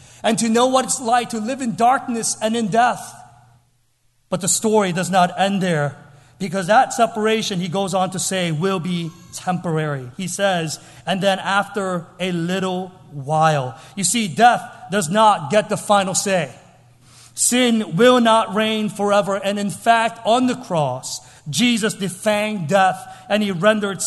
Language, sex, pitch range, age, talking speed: English, male, 145-215 Hz, 40-59, 160 wpm